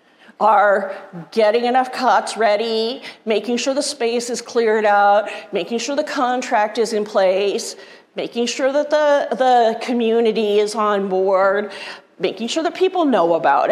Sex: female